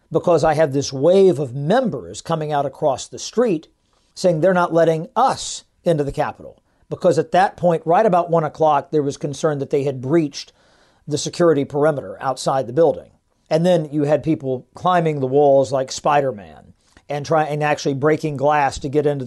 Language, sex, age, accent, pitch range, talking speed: English, male, 50-69, American, 140-170 Hz, 180 wpm